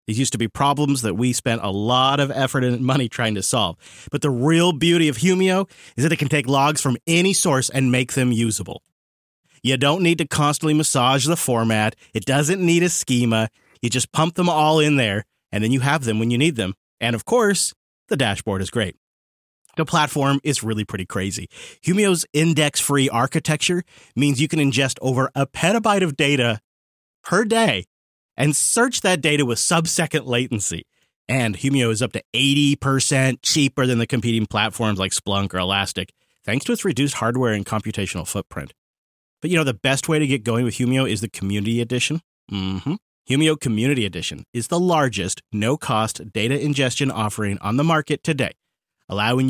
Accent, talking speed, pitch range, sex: American, 185 wpm, 110-150 Hz, male